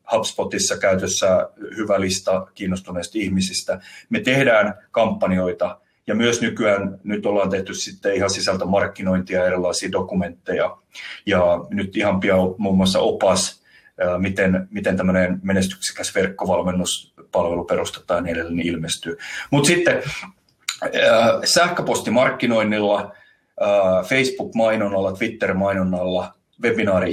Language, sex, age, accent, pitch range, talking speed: Finnish, male, 30-49, native, 90-110 Hz, 105 wpm